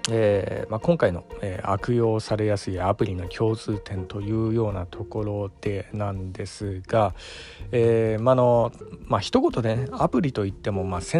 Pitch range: 95-115 Hz